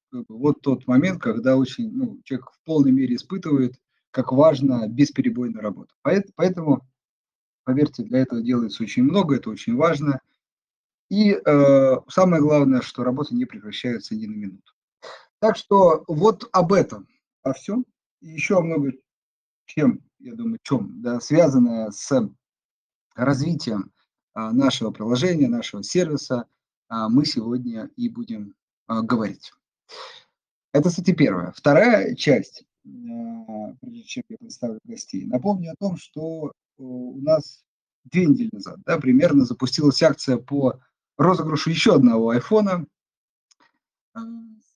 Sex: male